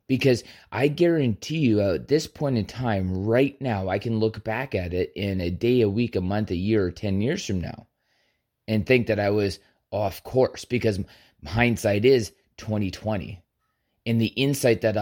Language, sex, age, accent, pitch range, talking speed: English, male, 30-49, American, 105-125 Hz, 190 wpm